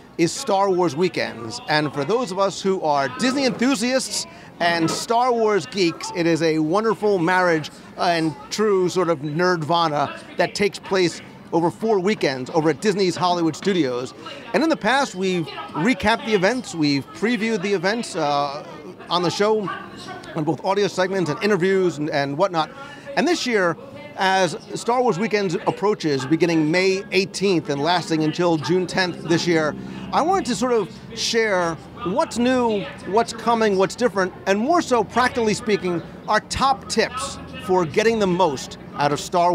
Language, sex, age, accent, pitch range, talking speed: English, male, 40-59, American, 165-215 Hz, 165 wpm